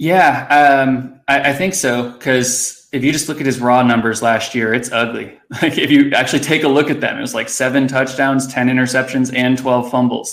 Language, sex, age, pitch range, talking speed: English, male, 20-39, 120-130 Hz, 220 wpm